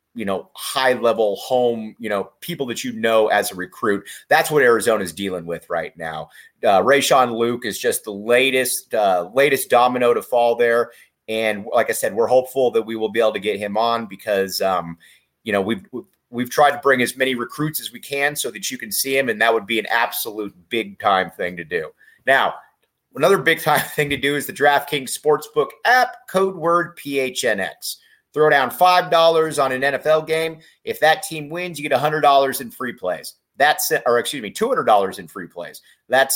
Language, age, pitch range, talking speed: English, 30-49, 125-170 Hz, 205 wpm